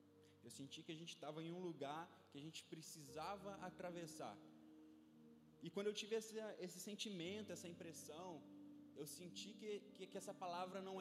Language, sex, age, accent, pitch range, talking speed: Gujarati, male, 20-39, Brazilian, 140-190 Hz, 170 wpm